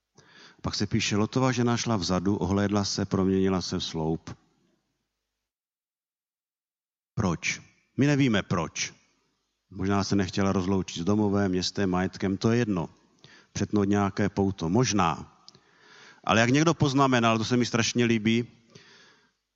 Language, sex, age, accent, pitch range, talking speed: Czech, male, 50-69, native, 85-110 Hz, 125 wpm